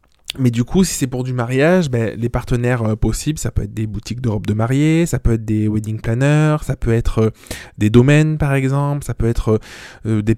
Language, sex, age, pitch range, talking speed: French, male, 20-39, 110-135 Hz, 235 wpm